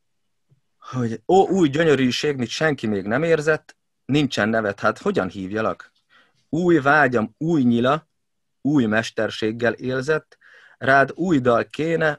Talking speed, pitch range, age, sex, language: 125 wpm, 105-130 Hz, 30-49, male, Hungarian